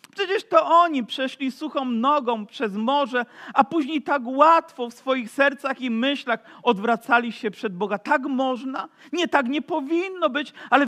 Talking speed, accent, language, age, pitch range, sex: 160 wpm, native, Polish, 50-69, 205-285 Hz, male